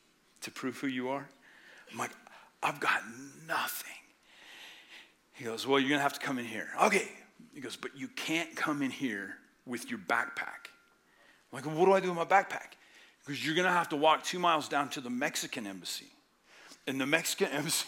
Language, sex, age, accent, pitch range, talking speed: English, male, 40-59, American, 155-220 Hz, 200 wpm